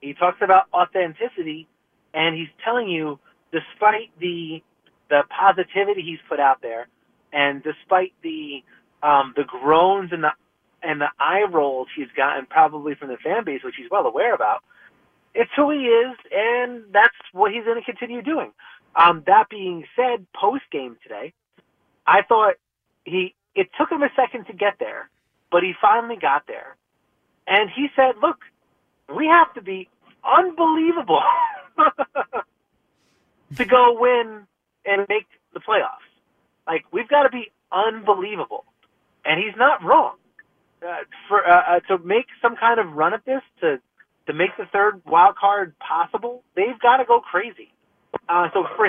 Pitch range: 175-245 Hz